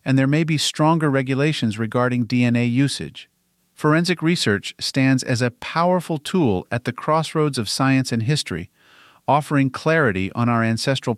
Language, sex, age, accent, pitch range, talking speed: English, male, 40-59, American, 125-160 Hz, 150 wpm